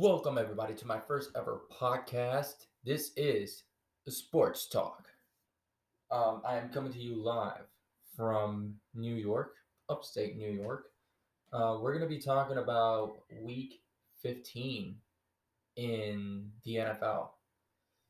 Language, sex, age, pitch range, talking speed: English, male, 20-39, 105-125 Hz, 115 wpm